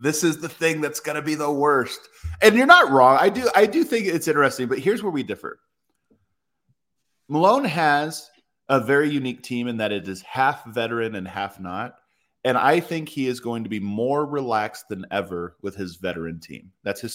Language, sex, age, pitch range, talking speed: English, male, 30-49, 115-165 Hz, 205 wpm